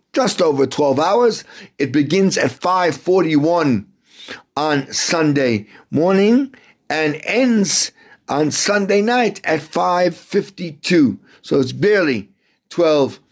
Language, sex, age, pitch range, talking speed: English, male, 50-69, 130-170 Hz, 100 wpm